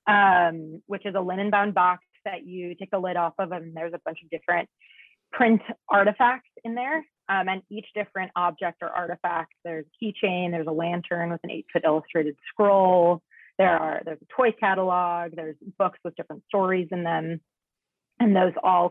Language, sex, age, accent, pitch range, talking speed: English, female, 30-49, American, 170-205 Hz, 180 wpm